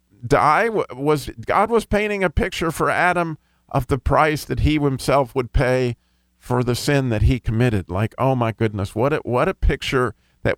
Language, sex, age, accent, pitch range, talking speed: English, male, 50-69, American, 115-160 Hz, 185 wpm